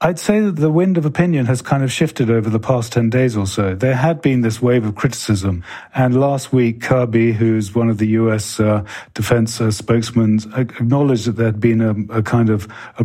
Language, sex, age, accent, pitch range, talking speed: English, male, 40-59, British, 115-130 Hz, 215 wpm